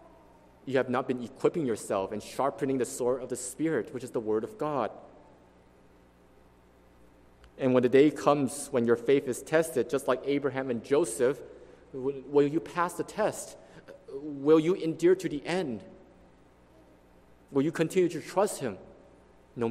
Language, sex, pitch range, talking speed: English, male, 110-150 Hz, 160 wpm